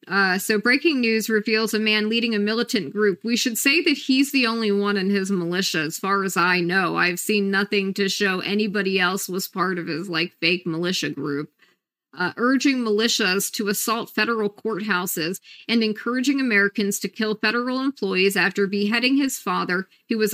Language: English